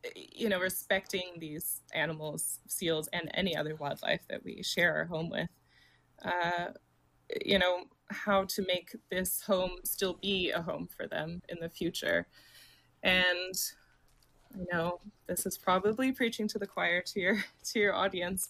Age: 20-39